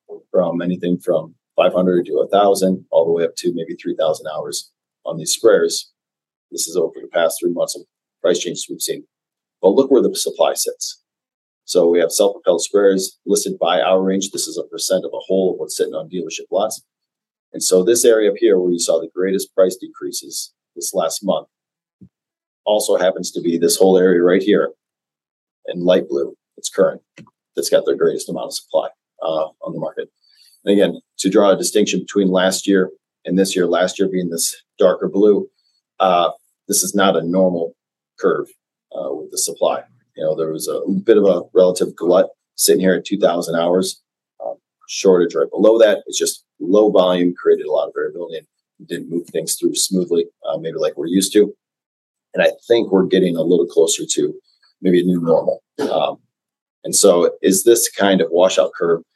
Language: English